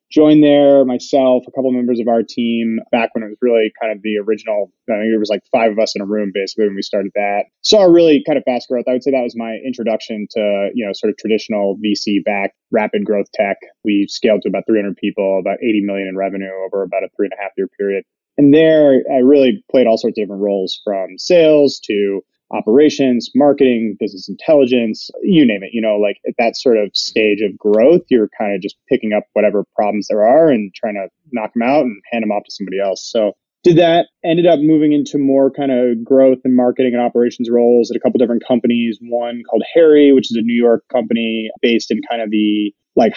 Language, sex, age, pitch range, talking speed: English, male, 20-39, 105-130 Hz, 235 wpm